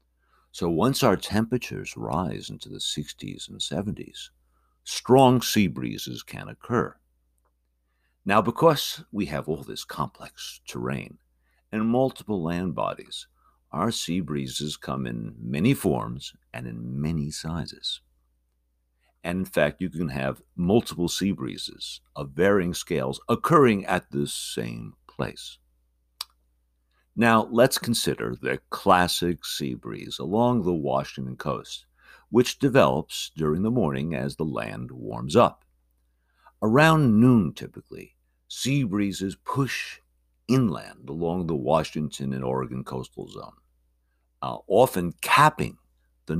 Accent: American